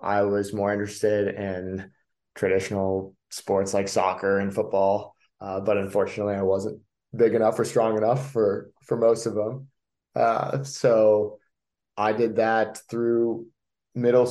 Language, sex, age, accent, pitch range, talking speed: English, male, 20-39, American, 100-110 Hz, 140 wpm